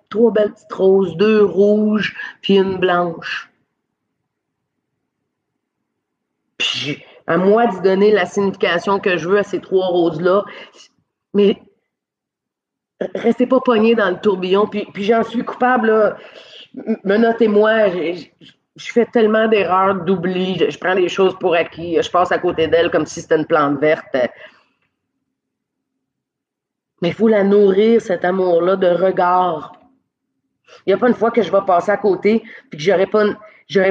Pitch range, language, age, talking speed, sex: 180-215 Hz, French, 30-49, 150 wpm, female